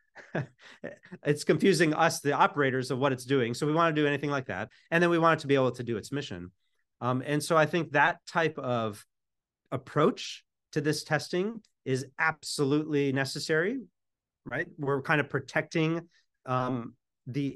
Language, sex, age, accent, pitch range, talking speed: English, male, 30-49, American, 120-155 Hz, 175 wpm